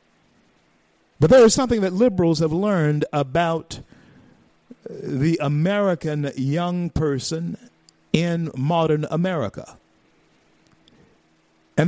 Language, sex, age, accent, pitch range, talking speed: English, male, 50-69, American, 120-175 Hz, 85 wpm